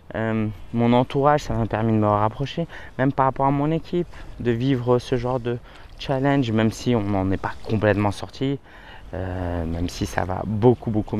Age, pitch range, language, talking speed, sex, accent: 20-39, 110-135 Hz, French, 195 wpm, male, French